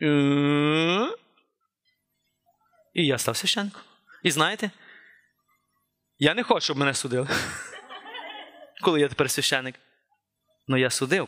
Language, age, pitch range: Ukrainian, 20-39, 170-270 Hz